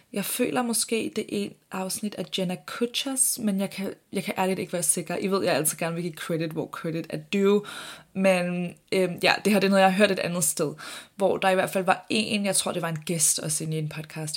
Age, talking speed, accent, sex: 20-39, 265 wpm, native, female